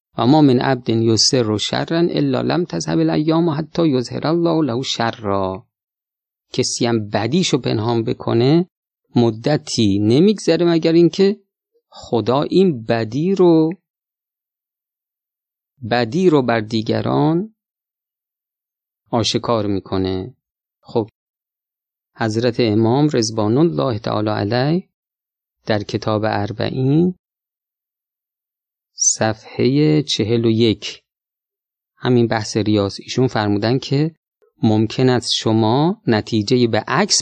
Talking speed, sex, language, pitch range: 100 wpm, male, Persian, 110-155 Hz